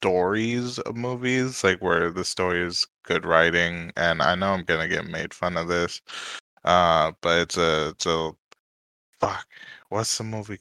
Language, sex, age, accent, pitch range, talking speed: English, male, 20-39, American, 85-105 Hz, 170 wpm